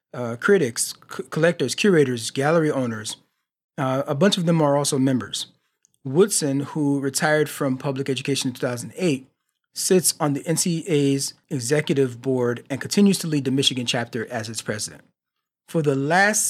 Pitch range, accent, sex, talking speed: 135-165 Hz, American, male, 155 wpm